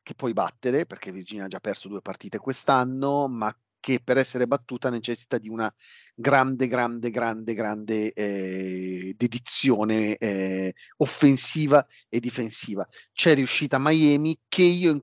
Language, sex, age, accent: Italian, male, 40-59, native